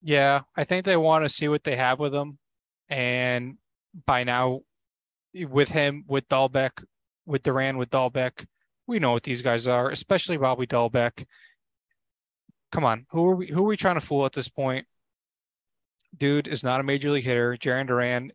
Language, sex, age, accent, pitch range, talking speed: English, male, 20-39, American, 130-155 Hz, 175 wpm